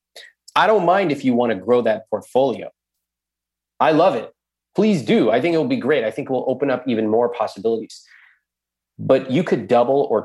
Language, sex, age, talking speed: English, male, 30-49, 195 wpm